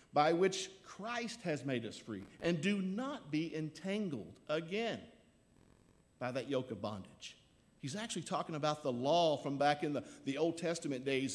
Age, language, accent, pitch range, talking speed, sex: 50-69, English, American, 115-150 Hz, 170 wpm, male